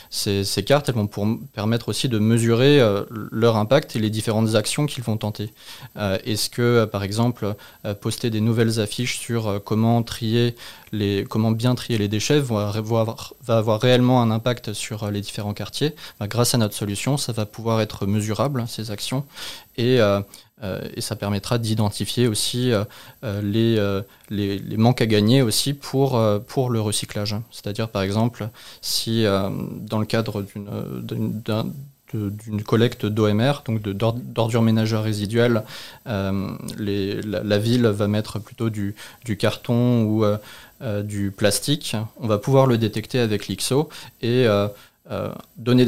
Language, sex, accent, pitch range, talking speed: French, male, French, 105-120 Hz, 175 wpm